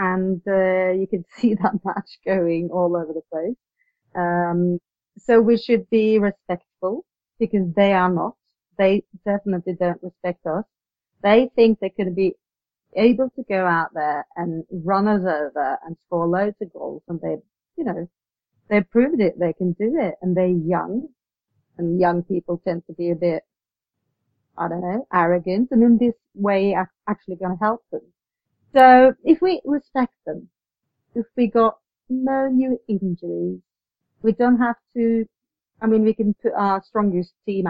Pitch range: 175-230 Hz